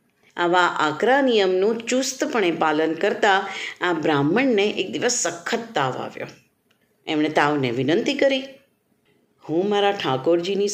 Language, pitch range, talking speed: Gujarati, 170-245 Hz, 110 wpm